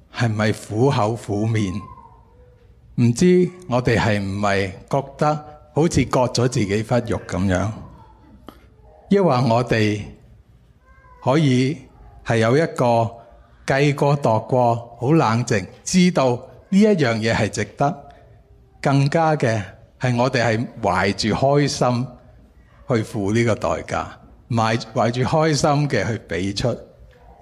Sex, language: male, Chinese